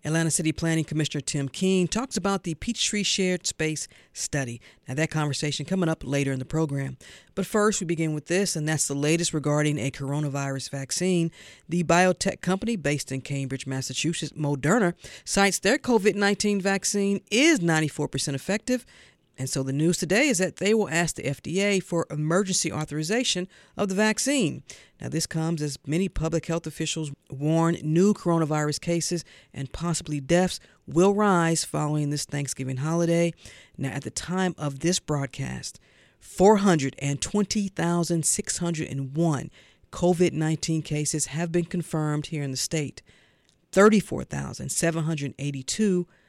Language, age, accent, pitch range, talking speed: English, 50-69, American, 145-180 Hz, 140 wpm